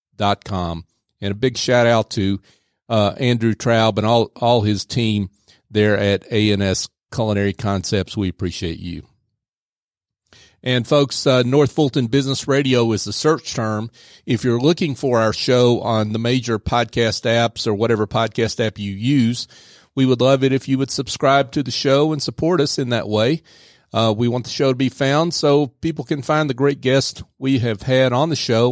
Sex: male